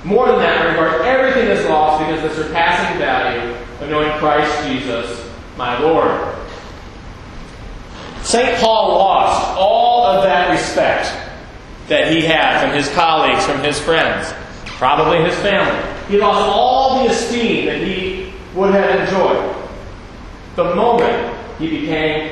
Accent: American